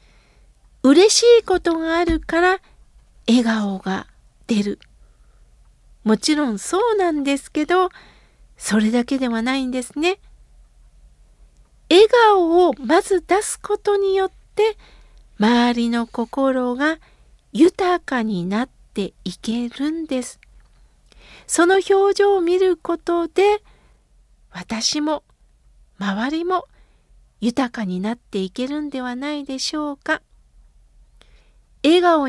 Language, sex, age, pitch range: Japanese, female, 50-69, 230-350 Hz